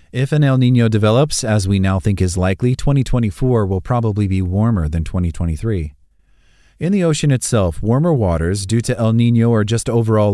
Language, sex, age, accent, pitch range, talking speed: English, male, 30-49, American, 95-125 Hz, 180 wpm